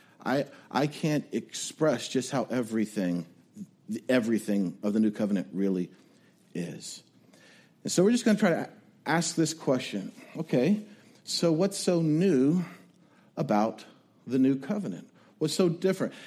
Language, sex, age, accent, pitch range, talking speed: English, male, 50-69, American, 130-185 Hz, 135 wpm